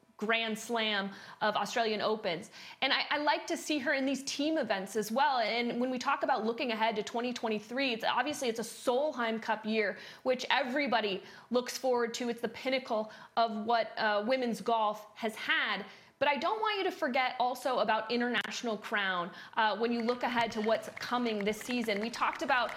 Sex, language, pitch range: female, English, 225-285 Hz